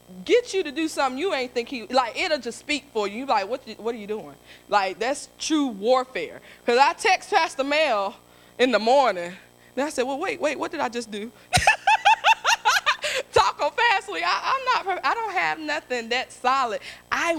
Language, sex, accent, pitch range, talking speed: English, female, American, 185-265 Hz, 195 wpm